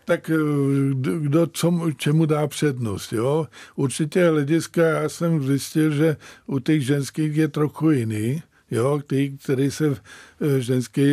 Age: 50-69